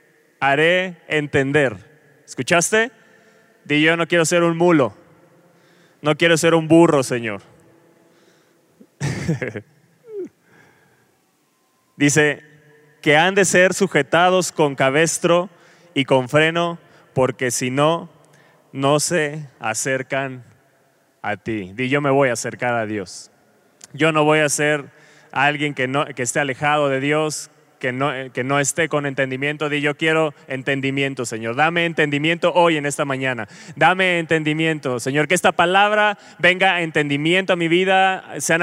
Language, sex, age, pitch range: Spanish, male, 20-39, 145-175 Hz